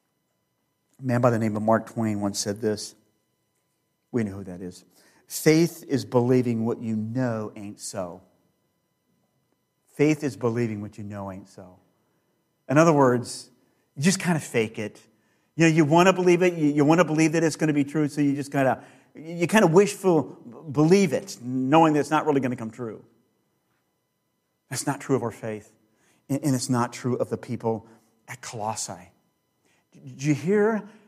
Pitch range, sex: 130-195 Hz, male